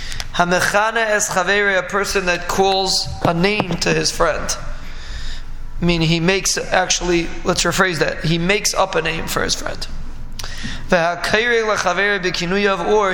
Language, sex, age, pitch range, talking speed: English, male, 20-39, 165-190 Hz, 120 wpm